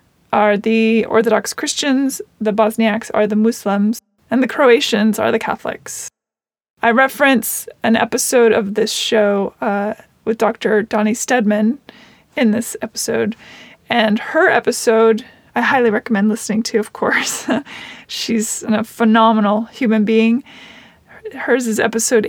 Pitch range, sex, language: 215-235 Hz, female, English